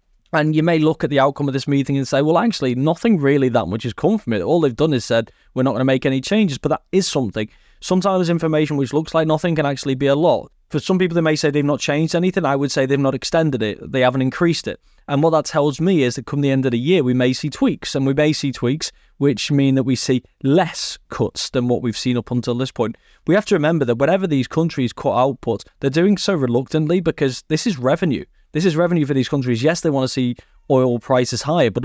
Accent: British